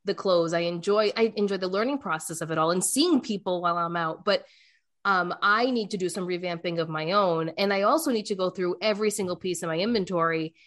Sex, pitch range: female, 170-215 Hz